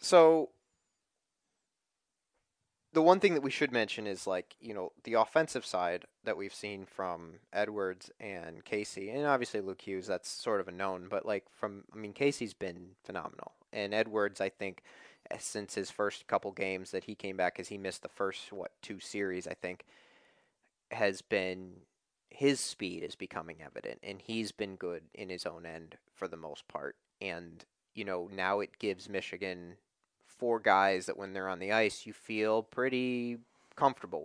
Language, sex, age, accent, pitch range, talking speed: English, male, 30-49, American, 95-130 Hz, 175 wpm